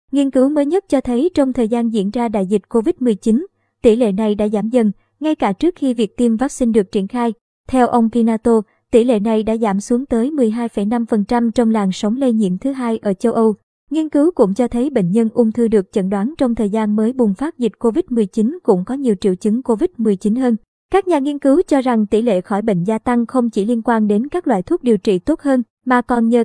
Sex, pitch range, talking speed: male, 215-255 Hz, 240 wpm